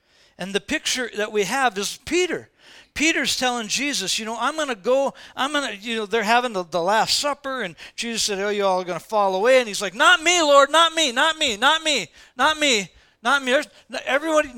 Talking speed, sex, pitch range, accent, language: 220 wpm, male, 190-280 Hz, American, English